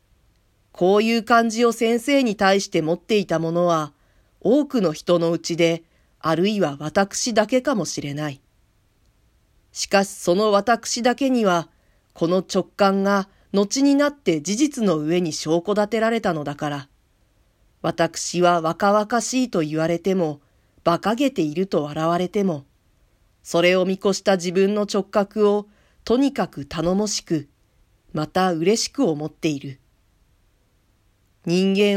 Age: 40-59